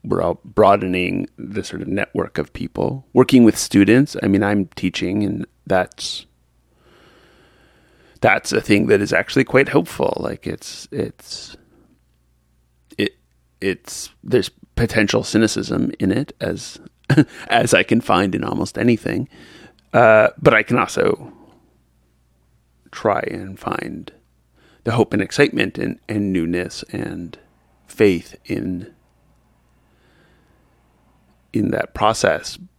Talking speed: 120 wpm